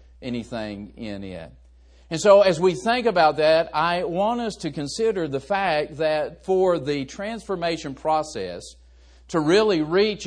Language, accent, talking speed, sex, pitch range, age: English, American, 145 wpm, male, 140-215 Hz, 50-69